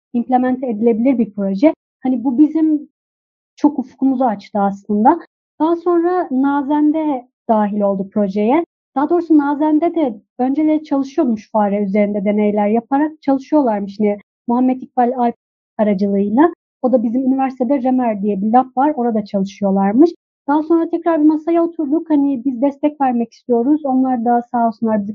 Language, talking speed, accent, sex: Turkish, 145 wpm, native, female